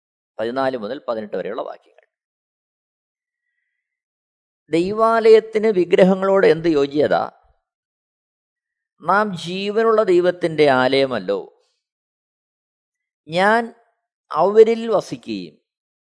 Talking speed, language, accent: 60 wpm, Malayalam, native